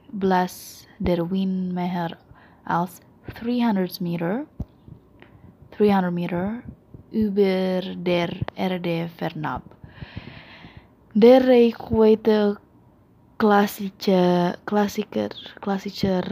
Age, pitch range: 20-39, 180-210 Hz